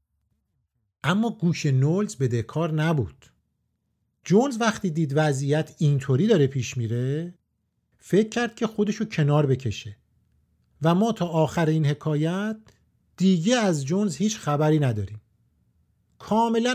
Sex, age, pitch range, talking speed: male, 50-69, 120-180 Hz, 120 wpm